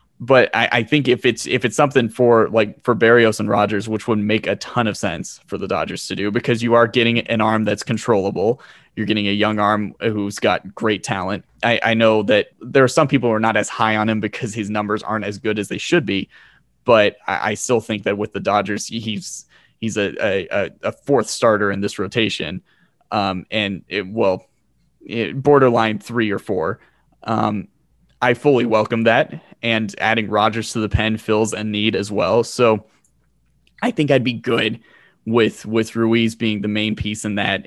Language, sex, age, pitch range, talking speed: English, male, 20-39, 105-120 Hz, 205 wpm